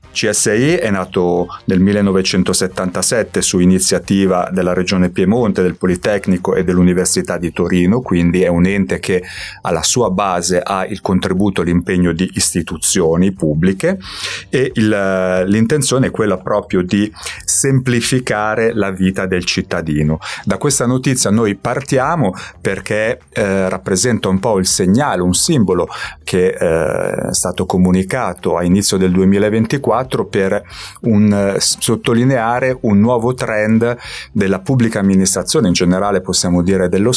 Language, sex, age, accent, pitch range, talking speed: Italian, male, 30-49, native, 90-105 Hz, 130 wpm